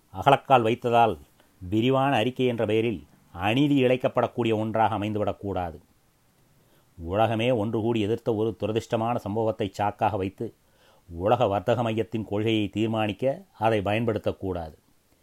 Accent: native